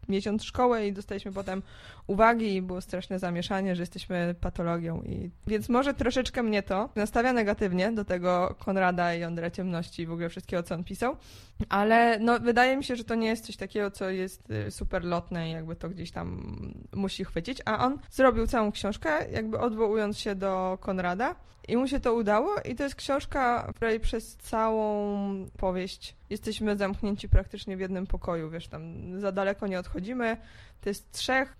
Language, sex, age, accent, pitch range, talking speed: Polish, female, 20-39, native, 185-225 Hz, 180 wpm